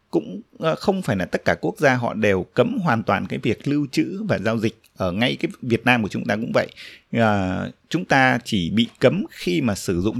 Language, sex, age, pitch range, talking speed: Vietnamese, male, 20-39, 100-130 Hz, 230 wpm